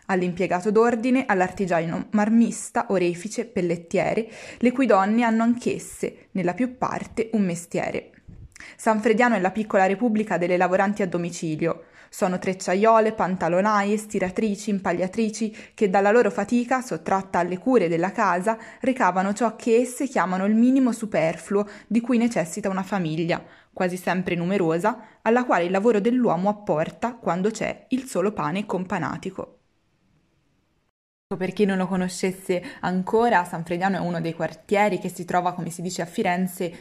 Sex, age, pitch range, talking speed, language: female, 20-39, 175-215 Hz, 145 wpm, Italian